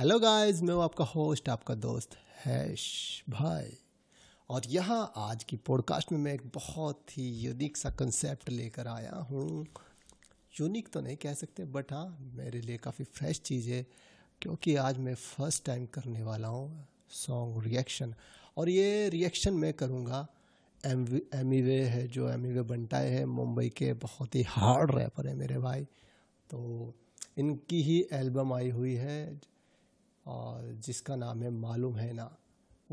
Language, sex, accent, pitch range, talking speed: Hindi, male, native, 120-145 Hz, 155 wpm